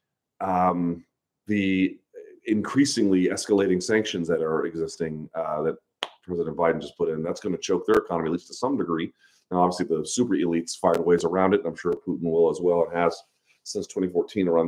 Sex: male